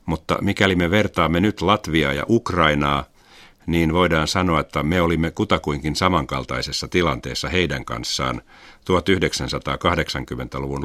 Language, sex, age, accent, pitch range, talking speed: Finnish, male, 50-69, native, 70-90 Hz, 110 wpm